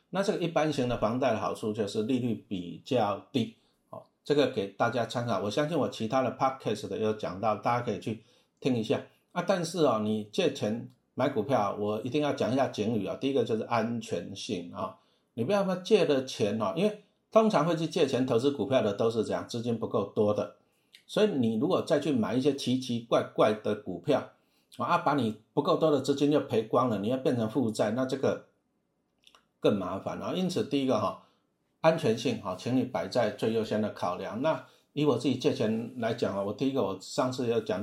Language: Chinese